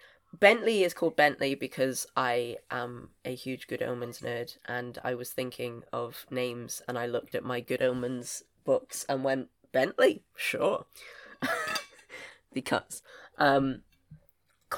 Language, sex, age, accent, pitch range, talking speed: English, female, 20-39, British, 120-140 Hz, 130 wpm